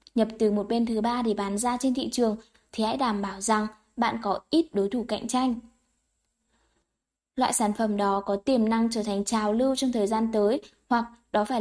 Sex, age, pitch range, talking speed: female, 10-29, 210-245 Hz, 215 wpm